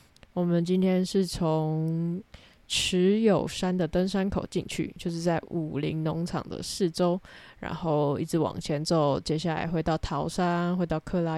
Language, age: Chinese, 10-29